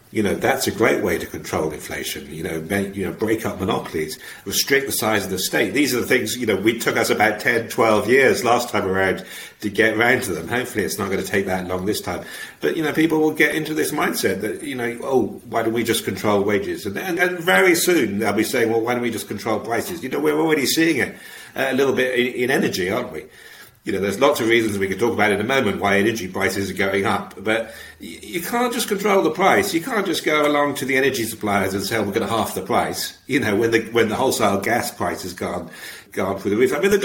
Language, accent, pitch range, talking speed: English, British, 105-155 Hz, 265 wpm